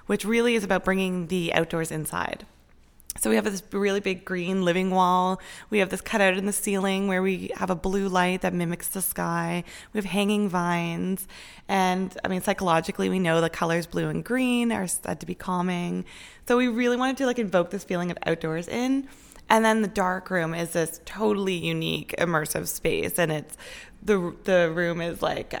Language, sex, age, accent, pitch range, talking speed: English, female, 20-39, American, 170-195 Hz, 195 wpm